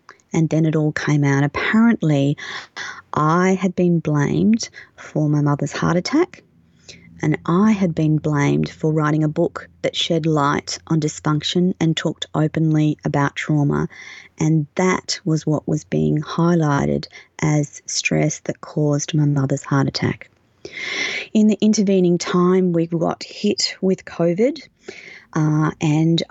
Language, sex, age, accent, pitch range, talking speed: English, female, 30-49, Australian, 155-185 Hz, 140 wpm